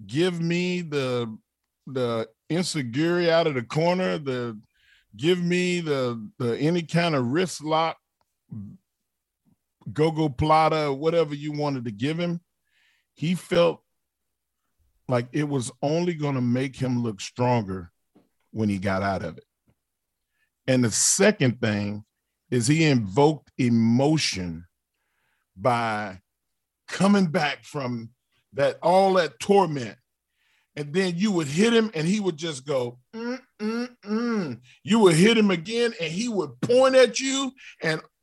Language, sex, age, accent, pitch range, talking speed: English, male, 40-59, American, 125-200 Hz, 140 wpm